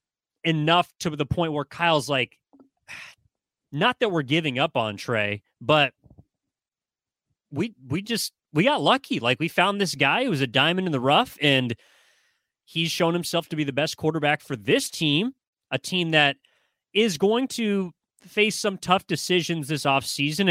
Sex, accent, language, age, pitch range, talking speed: male, American, English, 30-49, 125-160 Hz, 170 wpm